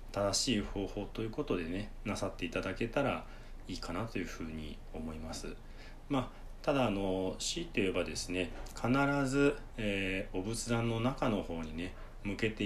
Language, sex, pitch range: Japanese, male, 90-115 Hz